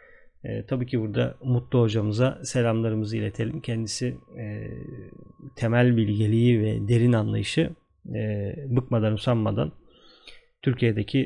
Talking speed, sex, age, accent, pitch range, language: 95 wpm, male, 40-59, native, 110-135 Hz, Turkish